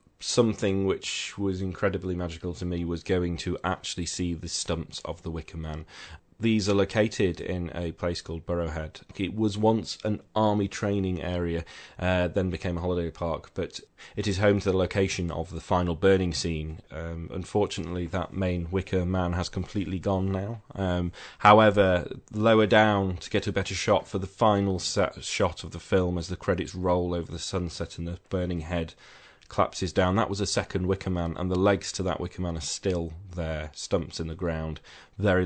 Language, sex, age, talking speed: English, male, 30-49, 190 wpm